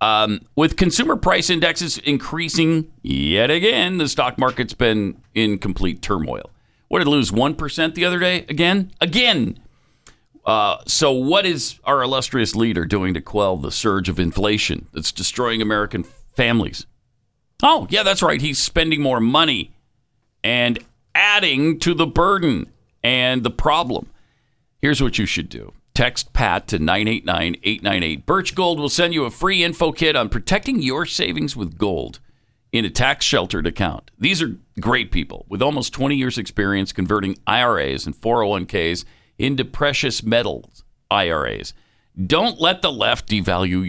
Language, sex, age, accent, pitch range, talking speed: English, male, 50-69, American, 100-155 Hz, 150 wpm